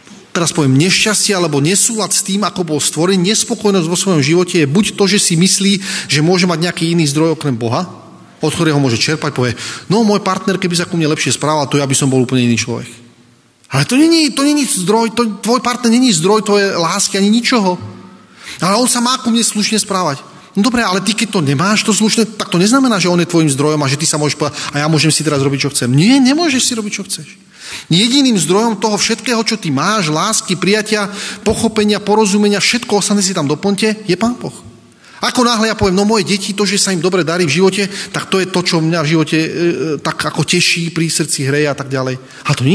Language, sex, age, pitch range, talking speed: Slovak, male, 30-49, 155-210 Hz, 240 wpm